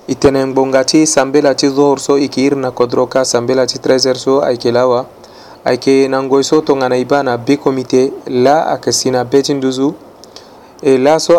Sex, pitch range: male, 125-145 Hz